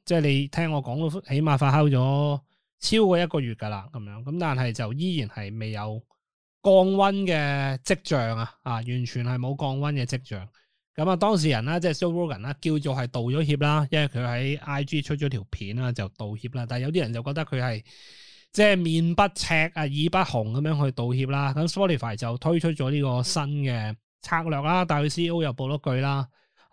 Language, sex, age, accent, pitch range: Chinese, male, 20-39, native, 125-170 Hz